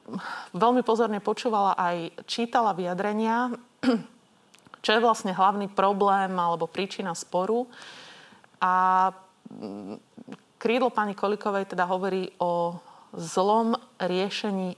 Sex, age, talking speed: female, 30-49, 95 wpm